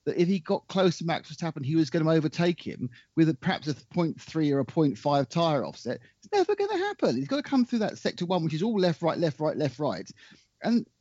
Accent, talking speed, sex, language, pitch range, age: British, 255 wpm, male, English, 140-215 Hz, 40-59